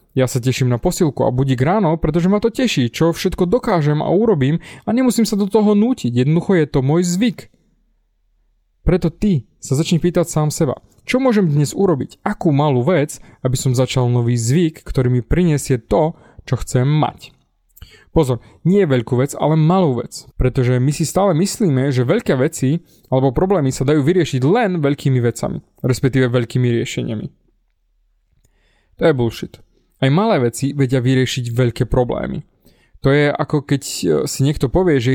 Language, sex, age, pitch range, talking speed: Slovak, male, 20-39, 130-175 Hz, 165 wpm